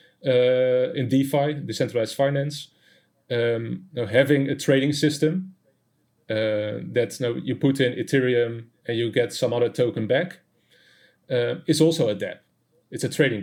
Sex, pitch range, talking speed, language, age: male, 120-155 Hz, 145 wpm, English, 30-49